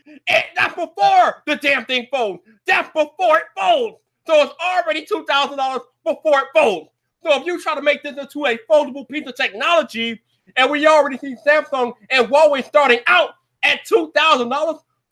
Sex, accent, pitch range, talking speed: male, American, 255-325 Hz, 165 wpm